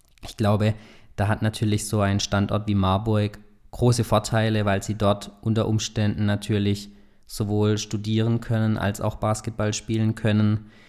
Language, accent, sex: German, German, male